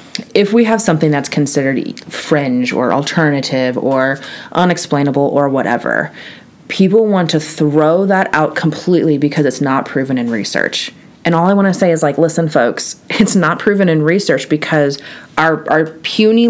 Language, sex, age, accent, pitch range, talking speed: English, female, 30-49, American, 140-190 Hz, 165 wpm